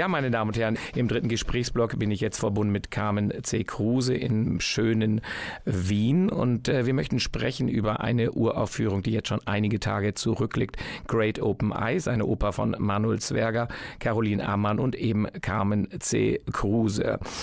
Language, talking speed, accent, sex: German, 165 wpm, German, male